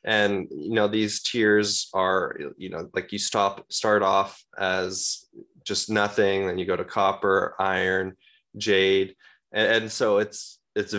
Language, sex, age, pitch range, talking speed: English, male, 20-39, 100-135 Hz, 155 wpm